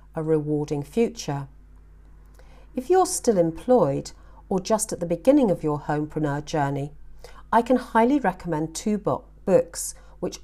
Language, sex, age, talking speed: English, female, 50-69, 130 wpm